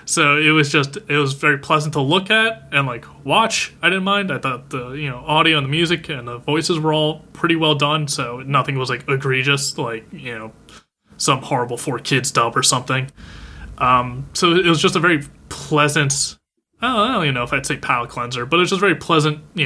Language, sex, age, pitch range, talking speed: English, male, 20-39, 130-155 Hz, 230 wpm